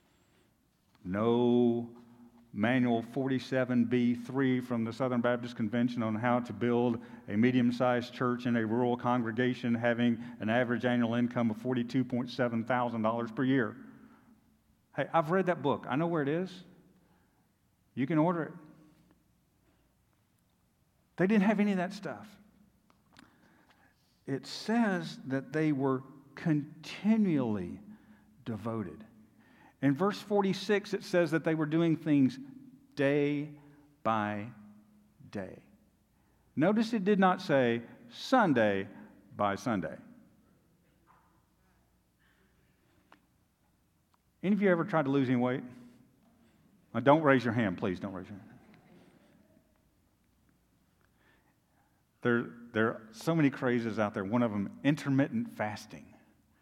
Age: 50-69